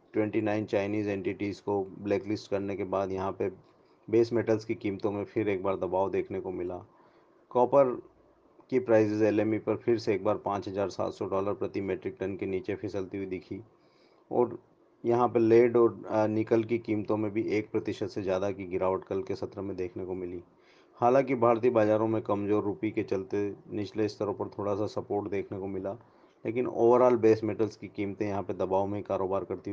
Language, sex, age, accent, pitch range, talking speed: English, male, 30-49, Indian, 100-115 Hz, 150 wpm